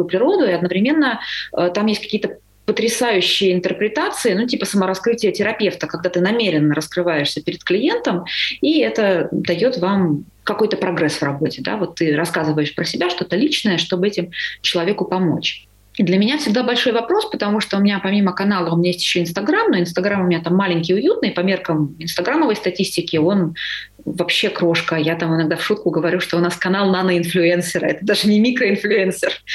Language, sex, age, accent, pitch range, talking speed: Russian, female, 30-49, native, 175-230 Hz, 170 wpm